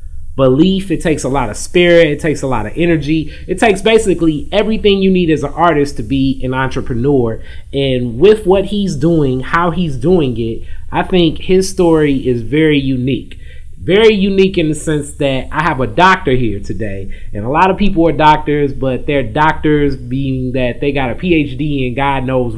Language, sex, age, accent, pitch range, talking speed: English, male, 20-39, American, 125-165 Hz, 195 wpm